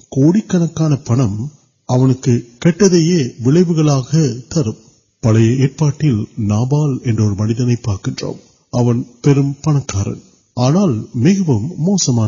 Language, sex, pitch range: Urdu, male, 115-150 Hz